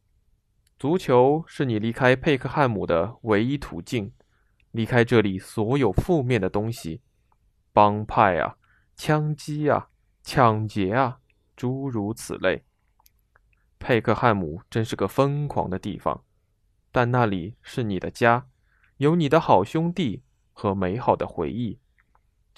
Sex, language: male, Chinese